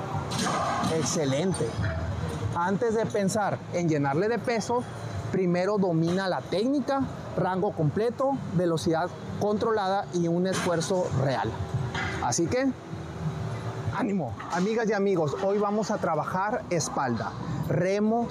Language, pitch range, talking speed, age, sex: Spanish, 130-195 Hz, 105 wpm, 30-49, male